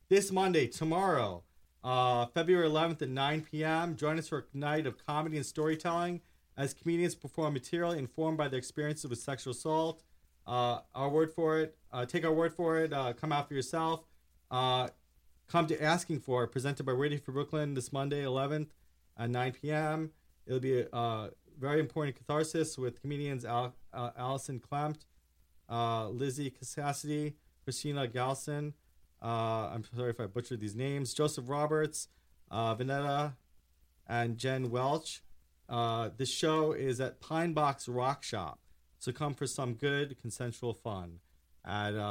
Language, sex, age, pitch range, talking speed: English, male, 30-49, 115-155 Hz, 155 wpm